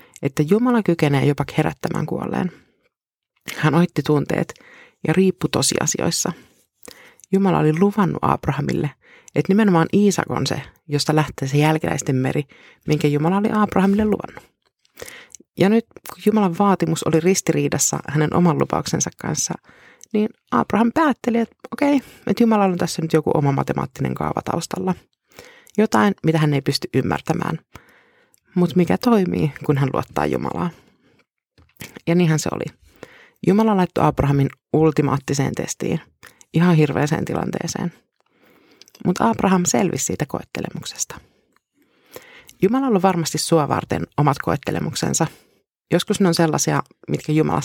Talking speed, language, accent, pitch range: 130 wpm, Finnish, native, 150-200 Hz